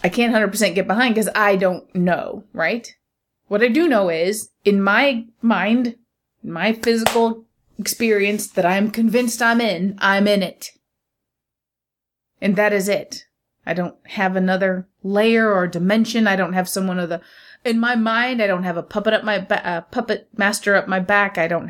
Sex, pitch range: female, 190-235 Hz